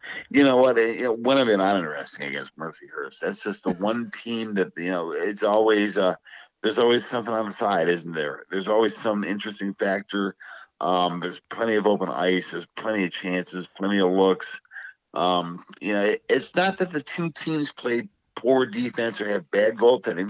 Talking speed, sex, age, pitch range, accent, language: 195 wpm, male, 50-69, 95-110 Hz, American, English